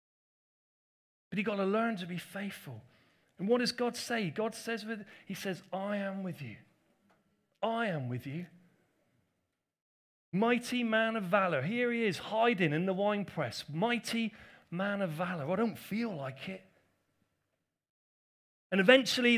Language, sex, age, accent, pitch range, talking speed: English, male, 30-49, British, 195-255 Hz, 150 wpm